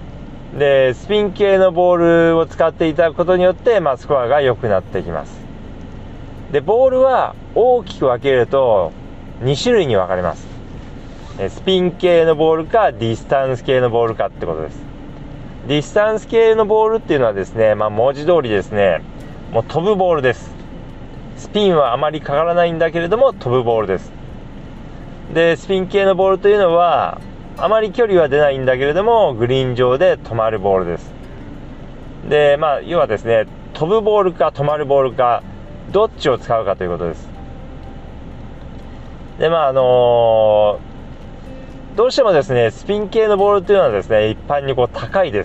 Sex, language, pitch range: male, Japanese, 115-185 Hz